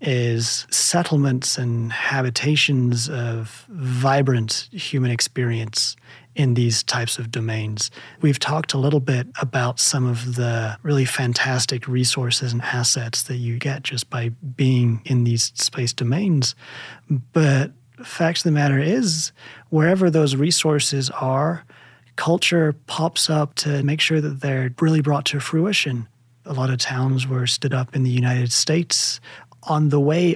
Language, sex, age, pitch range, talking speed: English, male, 30-49, 125-145 Hz, 145 wpm